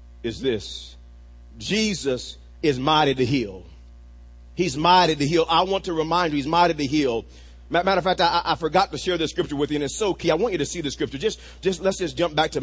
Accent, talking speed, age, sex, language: American, 240 wpm, 40-59, male, English